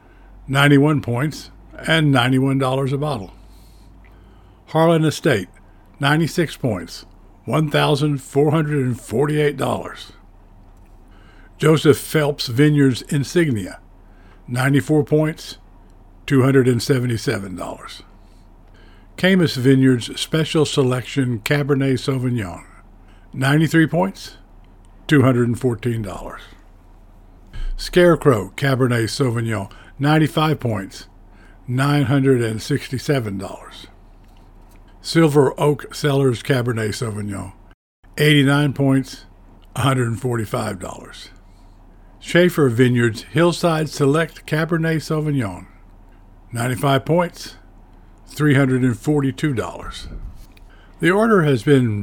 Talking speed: 60 wpm